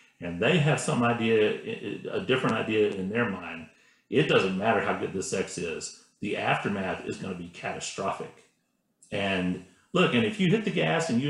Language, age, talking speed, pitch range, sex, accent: English, 40-59, 185 wpm, 110-135 Hz, male, American